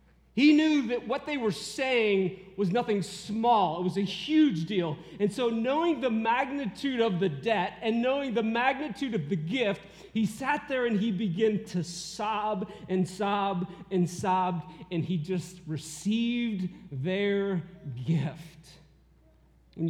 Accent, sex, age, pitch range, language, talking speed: American, male, 40-59, 175-235 Hz, English, 150 wpm